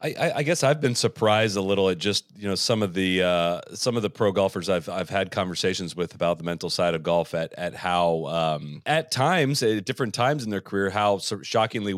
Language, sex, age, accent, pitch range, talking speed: English, male, 30-49, American, 100-135 Hz, 230 wpm